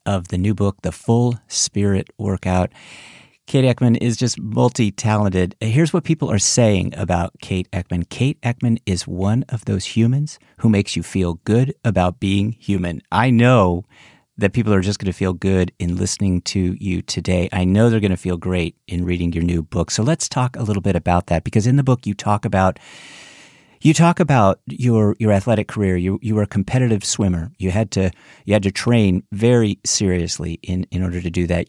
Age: 40-59